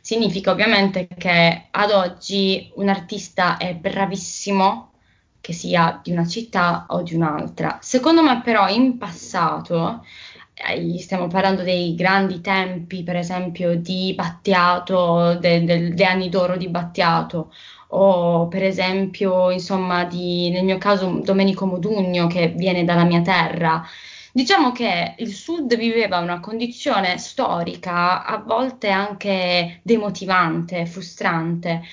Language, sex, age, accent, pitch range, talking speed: Italian, female, 20-39, native, 175-225 Hz, 125 wpm